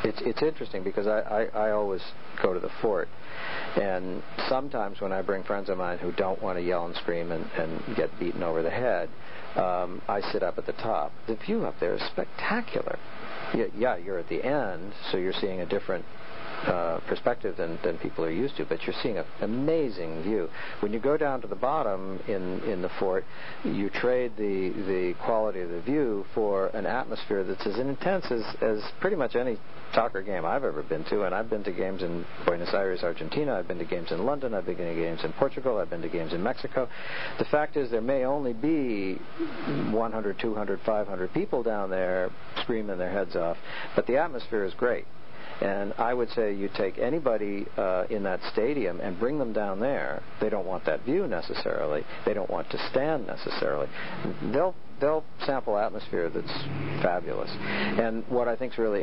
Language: English